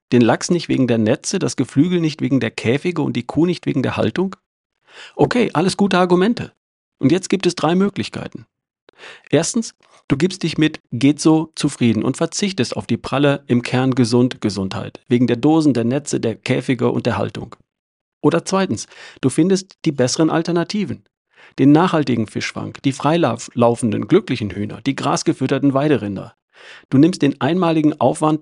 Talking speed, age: 165 wpm, 50-69